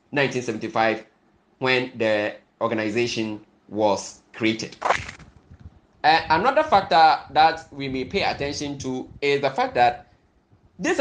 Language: English